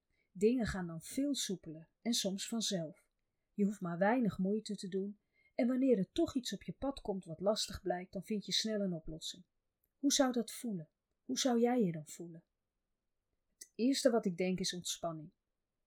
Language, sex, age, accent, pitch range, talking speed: Dutch, female, 30-49, Dutch, 165-235 Hz, 190 wpm